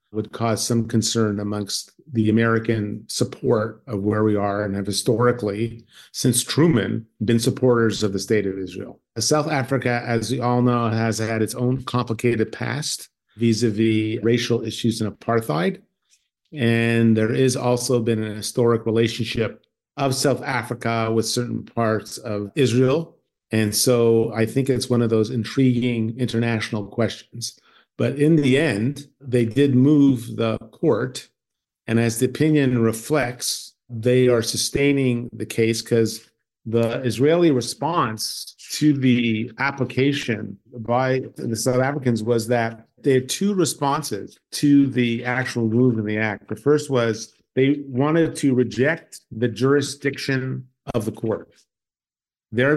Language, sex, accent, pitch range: English, male, American, 115-130 Hz